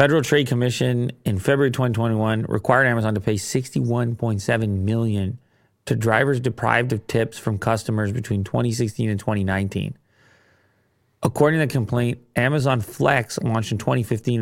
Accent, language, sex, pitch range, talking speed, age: American, English, male, 110-135 Hz, 135 wpm, 30-49